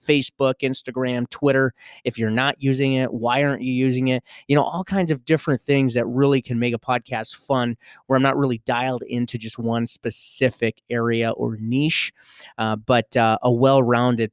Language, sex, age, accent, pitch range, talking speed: English, male, 30-49, American, 115-135 Hz, 185 wpm